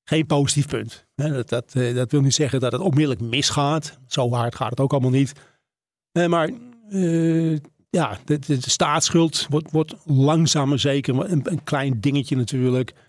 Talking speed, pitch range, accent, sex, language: 165 wpm, 130-160 Hz, Dutch, male, Dutch